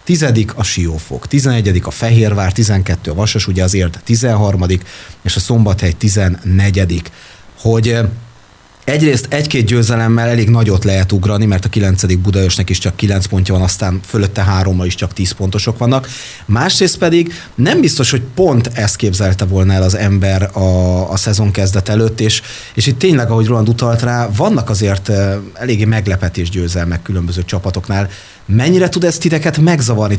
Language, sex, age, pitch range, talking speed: Hungarian, male, 30-49, 100-120 Hz, 160 wpm